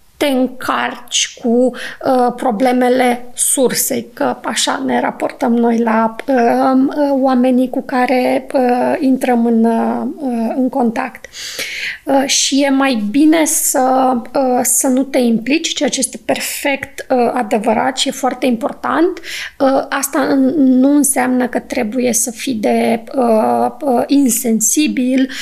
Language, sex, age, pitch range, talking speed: Romanian, female, 20-39, 245-275 Hz, 105 wpm